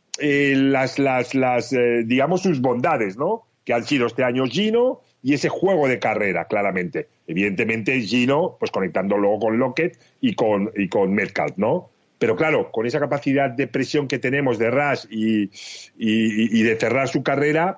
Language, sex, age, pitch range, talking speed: Spanish, male, 40-59, 110-140 Hz, 175 wpm